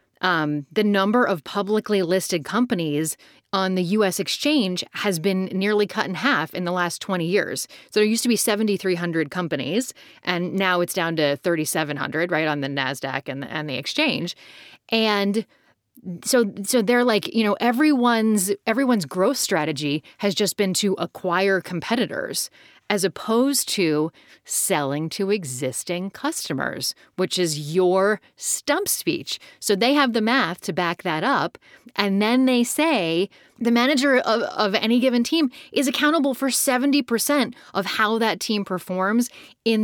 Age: 30-49